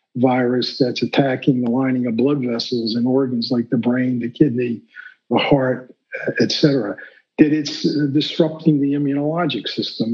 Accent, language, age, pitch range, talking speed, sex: American, English, 50-69, 130-155 Hz, 150 wpm, male